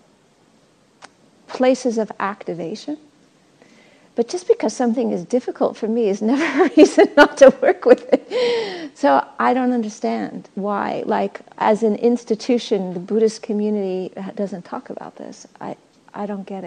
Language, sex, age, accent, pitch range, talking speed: English, female, 50-69, American, 215-265 Hz, 145 wpm